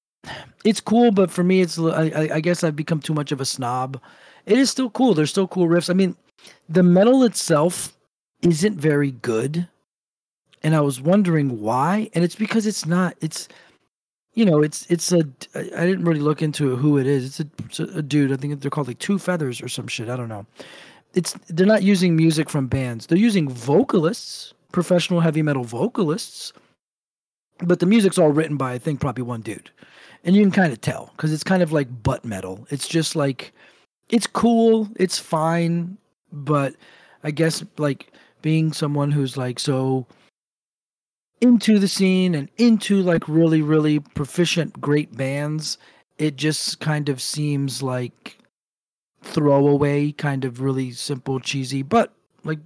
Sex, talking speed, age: male, 165 wpm, 40-59